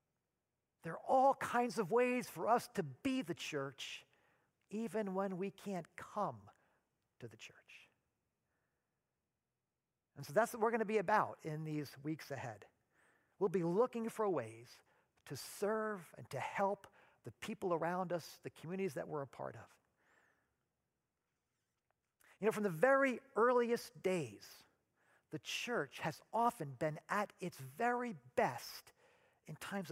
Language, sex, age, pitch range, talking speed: English, male, 50-69, 160-220 Hz, 145 wpm